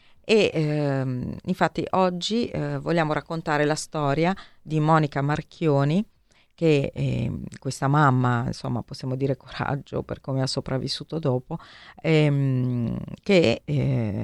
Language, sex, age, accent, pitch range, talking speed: Italian, female, 40-59, native, 125-150 Hz, 120 wpm